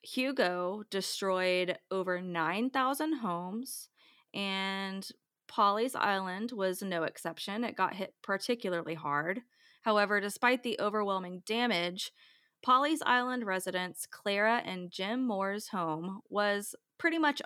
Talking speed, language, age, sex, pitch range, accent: 110 wpm, English, 20-39, female, 185-235 Hz, American